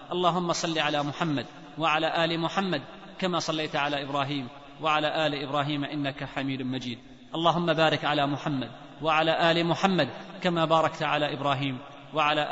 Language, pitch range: Arabic, 150-180 Hz